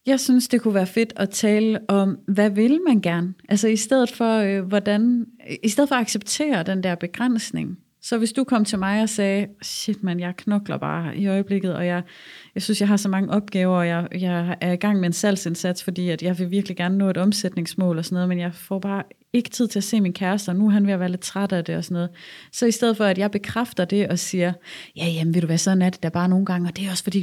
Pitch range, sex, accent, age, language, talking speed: 185-225 Hz, female, native, 30-49, Danish, 265 wpm